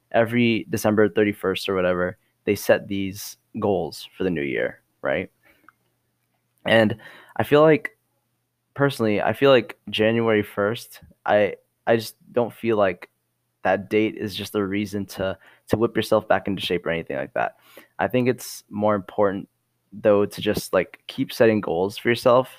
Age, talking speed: 10-29, 160 wpm